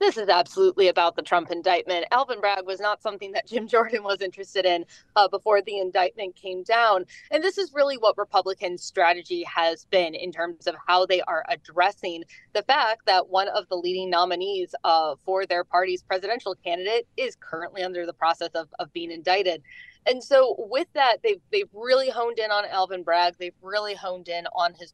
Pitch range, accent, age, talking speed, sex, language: 175-230 Hz, American, 20-39, 195 wpm, female, English